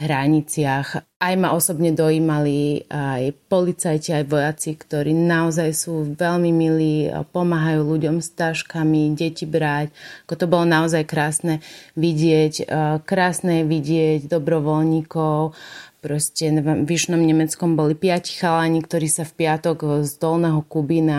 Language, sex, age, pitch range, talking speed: Slovak, female, 30-49, 155-165 Hz, 115 wpm